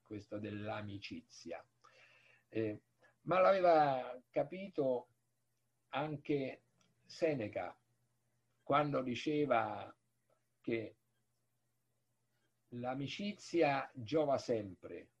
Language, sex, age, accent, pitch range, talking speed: Italian, male, 50-69, native, 115-145 Hz, 50 wpm